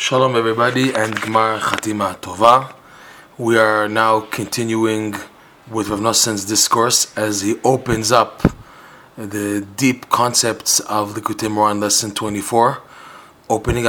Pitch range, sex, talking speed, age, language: 105-120 Hz, male, 115 wpm, 20-39, English